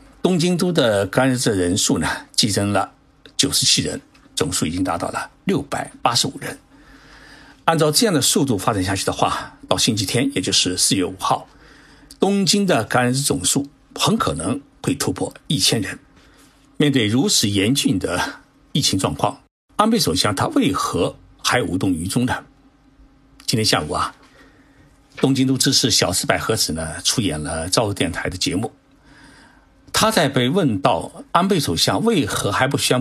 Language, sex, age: Chinese, male, 60-79